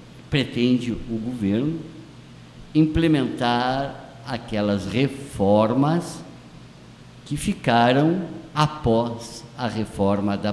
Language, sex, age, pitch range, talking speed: Portuguese, male, 50-69, 100-130 Hz, 70 wpm